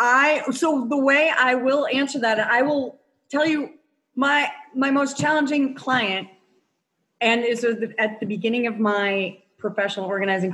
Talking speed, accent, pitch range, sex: 150 wpm, American, 205-255 Hz, female